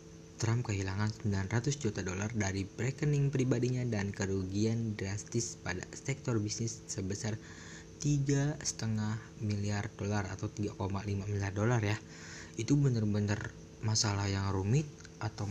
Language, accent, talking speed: Indonesian, native, 110 wpm